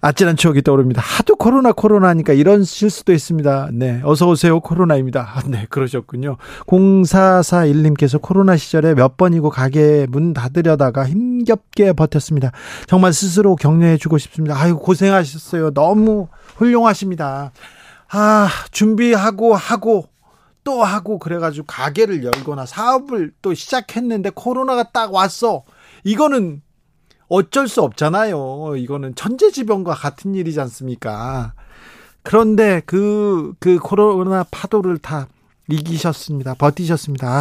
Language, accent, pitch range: Korean, native, 140-195 Hz